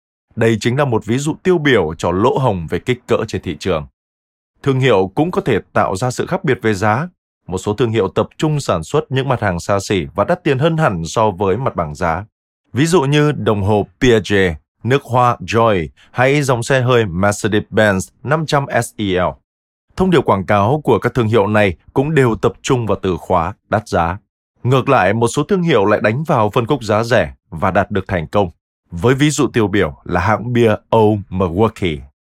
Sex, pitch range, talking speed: male, 95-135 Hz, 210 wpm